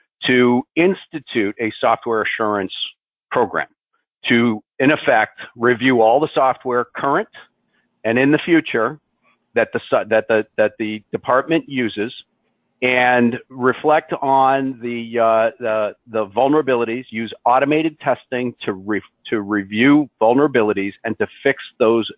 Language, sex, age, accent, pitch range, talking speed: English, male, 50-69, American, 110-140 Hz, 110 wpm